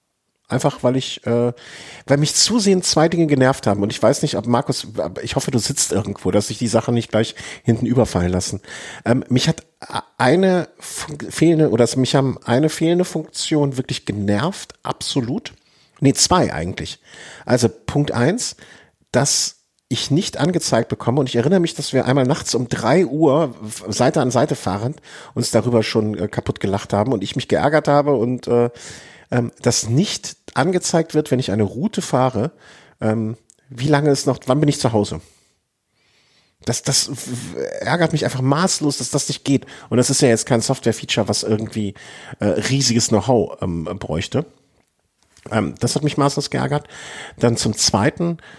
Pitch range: 110-145 Hz